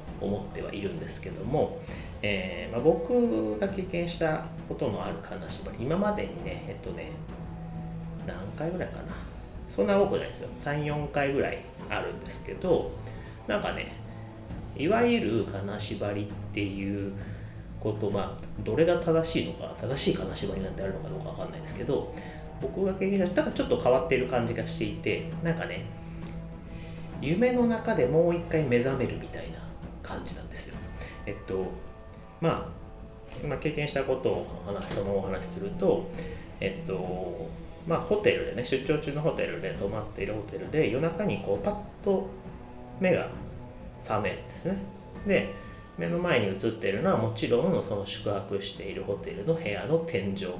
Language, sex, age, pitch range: Japanese, male, 30-49, 100-165 Hz